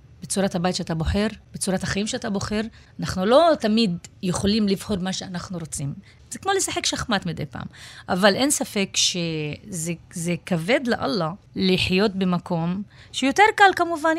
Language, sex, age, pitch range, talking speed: Hebrew, female, 30-49, 175-235 Hz, 140 wpm